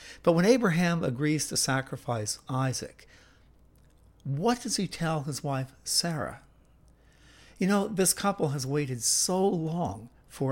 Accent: American